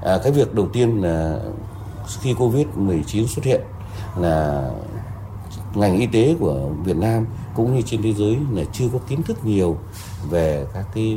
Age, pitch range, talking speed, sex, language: 30-49, 95-110 Hz, 165 wpm, male, Vietnamese